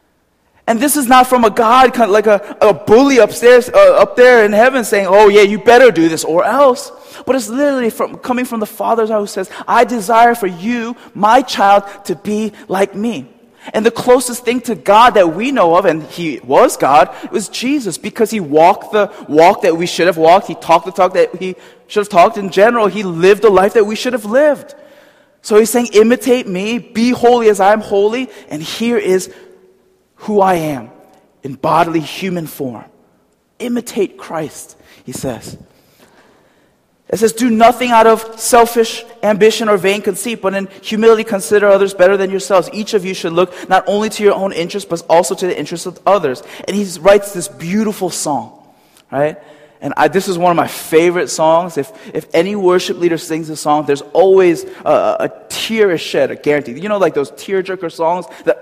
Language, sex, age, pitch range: Korean, male, 20-39, 180-235 Hz